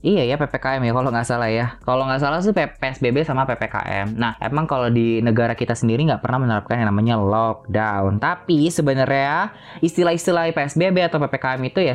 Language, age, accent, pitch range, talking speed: Indonesian, 20-39, native, 115-150 Hz, 180 wpm